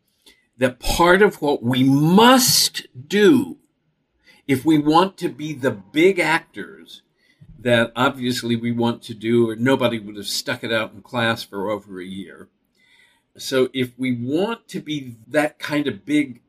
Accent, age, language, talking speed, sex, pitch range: American, 50-69, English, 160 wpm, male, 120-160 Hz